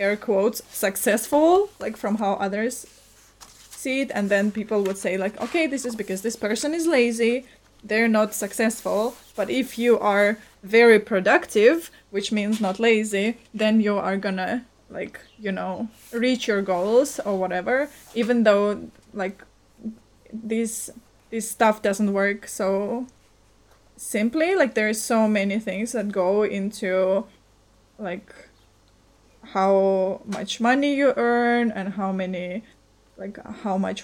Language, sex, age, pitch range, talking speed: English, female, 20-39, 200-235 Hz, 140 wpm